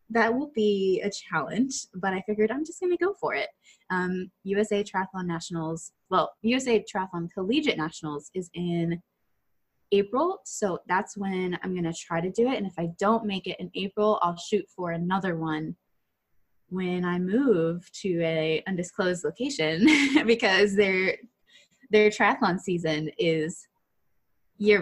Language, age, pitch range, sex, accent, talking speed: English, 20-39, 180-225 Hz, female, American, 155 wpm